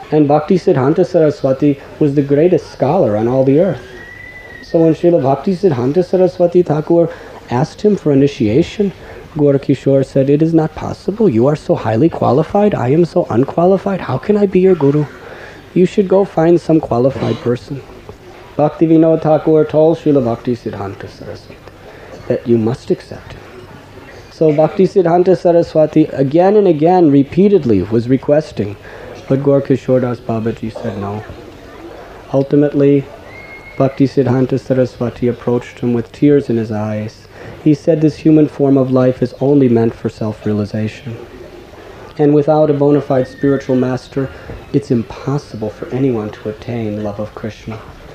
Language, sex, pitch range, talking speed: English, male, 115-155 Hz, 150 wpm